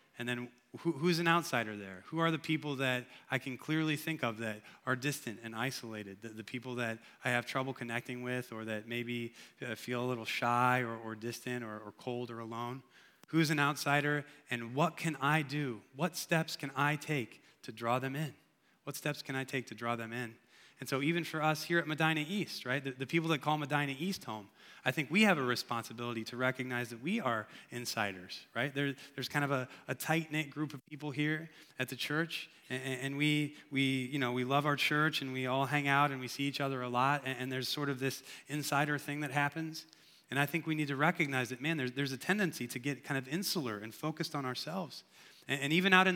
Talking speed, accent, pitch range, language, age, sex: 220 wpm, American, 125-155 Hz, English, 20-39, male